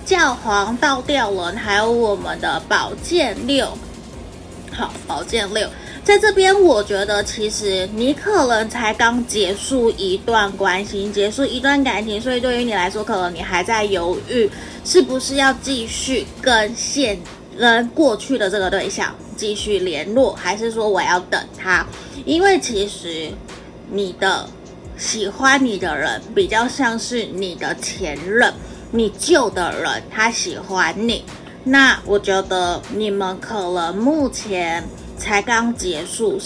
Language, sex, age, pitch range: Chinese, female, 20-39, 195-255 Hz